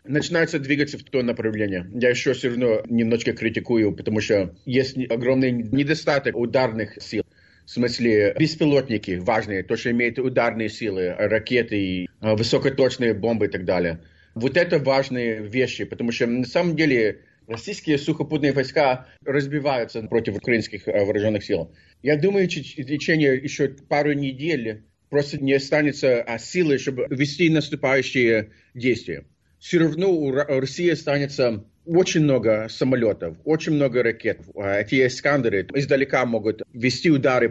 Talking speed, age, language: 130 wpm, 40-59, Russian